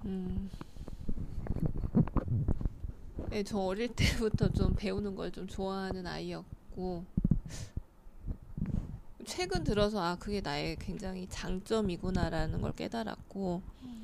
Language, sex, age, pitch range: Korean, female, 20-39, 185-230 Hz